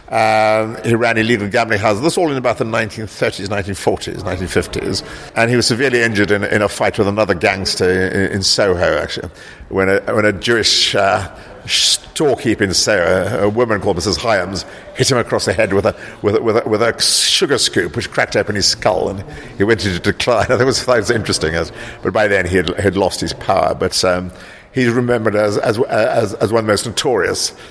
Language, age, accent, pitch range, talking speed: English, 50-69, British, 100-115 Hz, 210 wpm